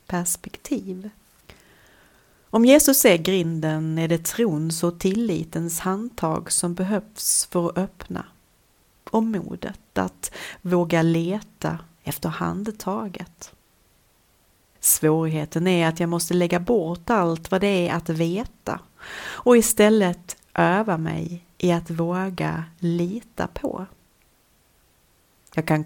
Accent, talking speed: native, 110 wpm